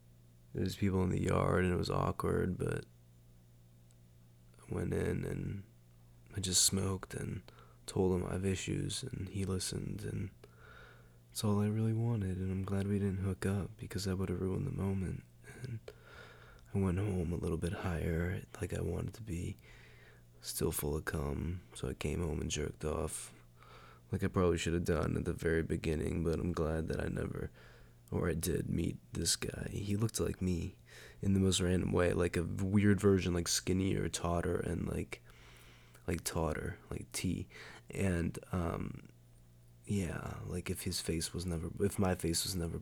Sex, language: male, English